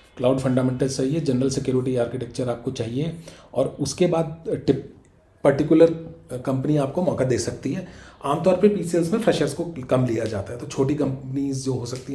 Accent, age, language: native, 30-49, Hindi